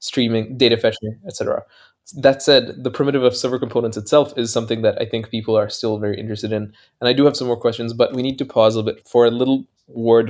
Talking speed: 240 wpm